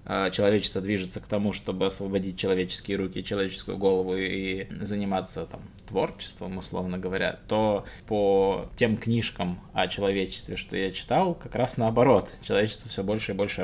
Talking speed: 140 wpm